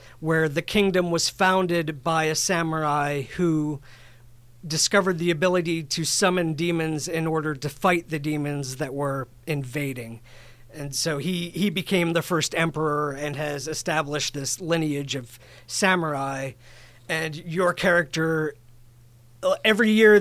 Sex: male